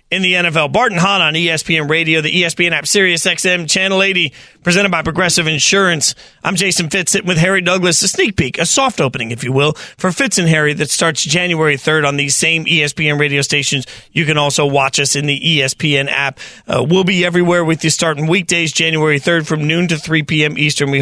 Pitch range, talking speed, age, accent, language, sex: 150-185 Hz, 215 wpm, 30-49, American, English, male